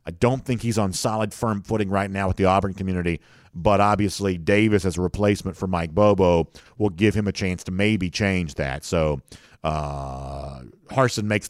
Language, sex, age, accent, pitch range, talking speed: English, male, 50-69, American, 90-115 Hz, 190 wpm